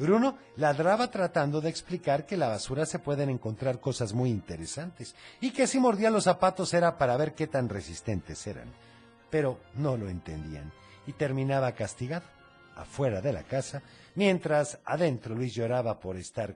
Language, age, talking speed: Spanish, 50-69, 165 wpm